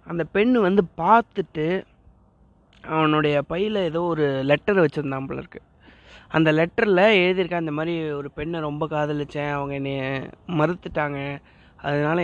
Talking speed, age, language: 120 wpm, 30-49, Tamil